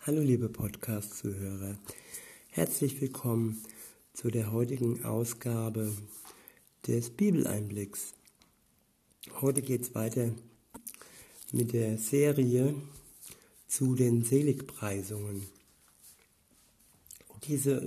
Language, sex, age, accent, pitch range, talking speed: German, male, 60-79, German, 115-135 Hz, 75 wpm